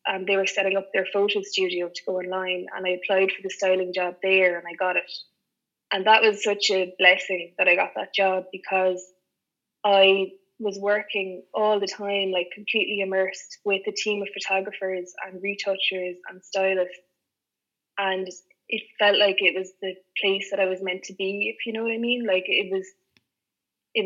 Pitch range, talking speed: 185-205 Hz, 190 wpm